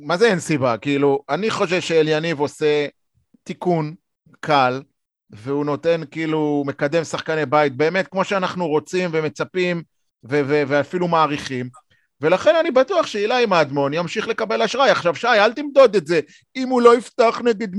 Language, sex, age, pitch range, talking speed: Hebrew, male, 30-49, 150-225 Hz, 150 wpm